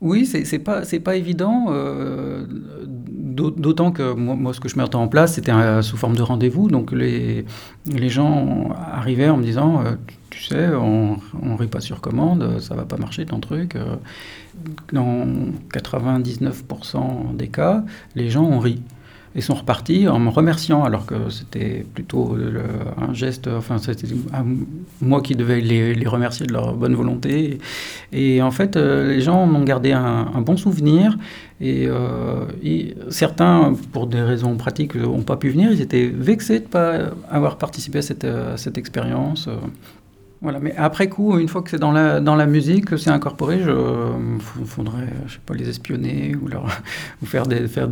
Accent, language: French, French